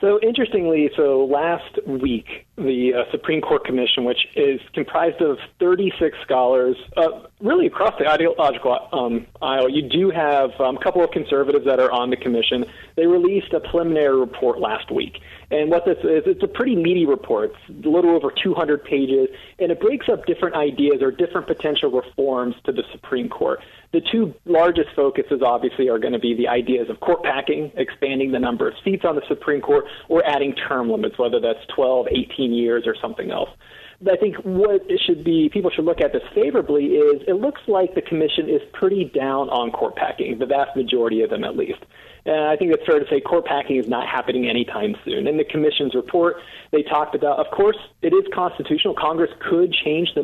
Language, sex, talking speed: English, male, 200 wpm